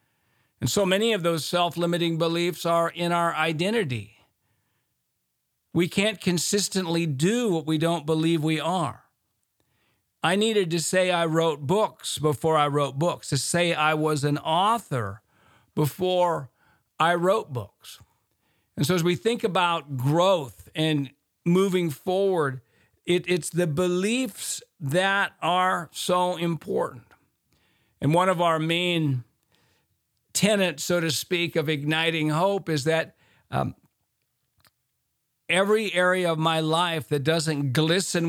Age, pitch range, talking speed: 50-69, 150-180 Hz, 130 wpm